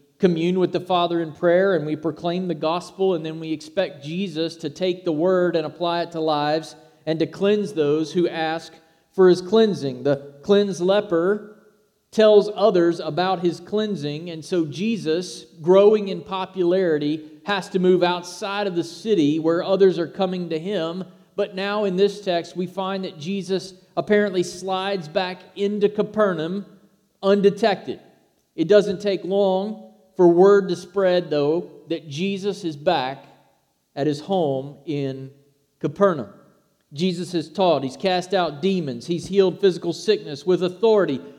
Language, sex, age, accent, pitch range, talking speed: English, male, 40-59, American, 160-195 Hz, 155 wpm